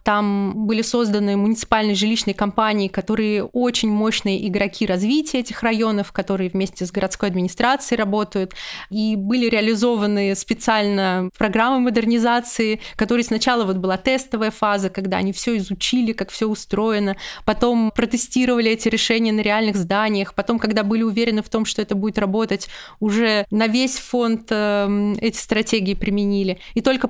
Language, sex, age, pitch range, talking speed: Russian, female, 20-39, 200-235 Hz, 140 wpm